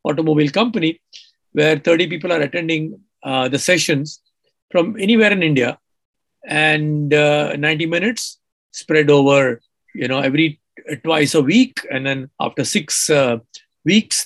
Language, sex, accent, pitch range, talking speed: English, male, Indian, 150-225 Hz, 135 wpm